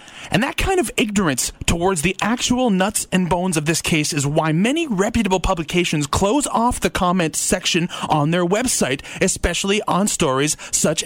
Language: English